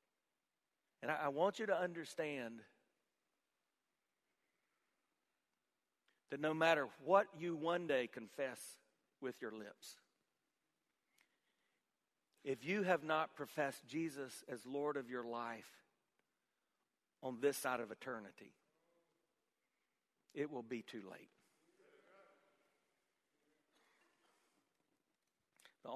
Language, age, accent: English, 50-69, American